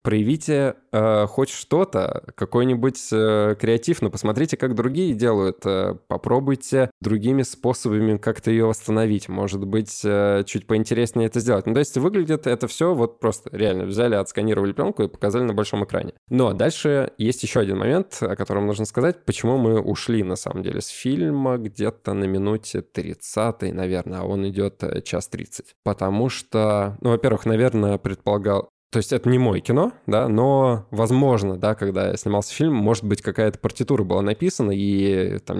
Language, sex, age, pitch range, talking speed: Russian, male, 20-39, 100-125 Hz, 170 wpm